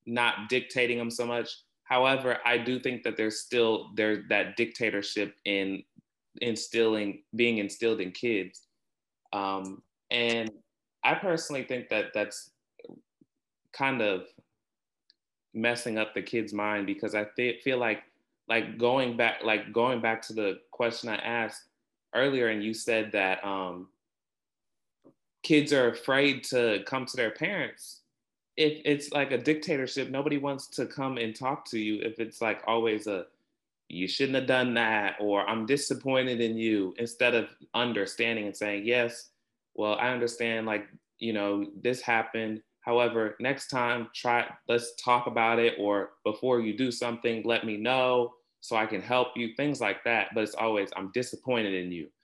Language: English